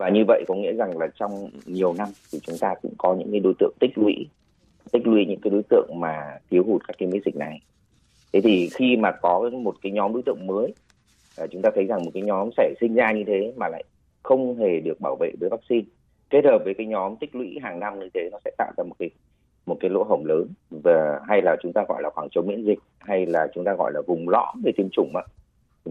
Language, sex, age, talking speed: Vietnamese, male, 30-49, 260 wpm